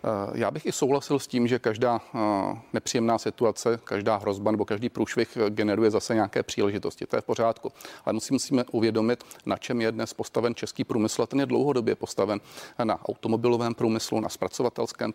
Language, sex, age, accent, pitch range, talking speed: Czech, male, 40-59, native, 110-120 Hz, 170 wpm